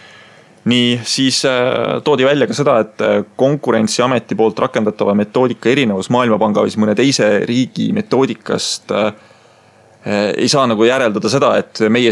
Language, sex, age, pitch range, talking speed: English, male, 20-39, 105-115 Hz, 130 wpm